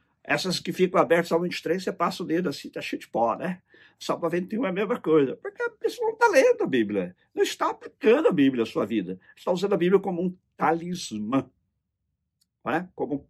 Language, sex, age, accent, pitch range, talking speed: Portuguese, male, 50-69, Brazilian, 105-170 Hz, 215 wpm